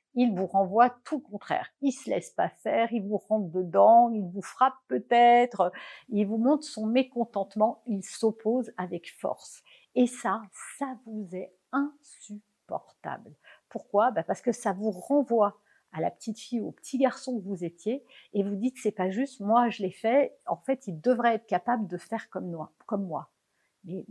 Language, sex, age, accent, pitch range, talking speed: French, female, 60-79, French, 195-255 Hz, 180 wpm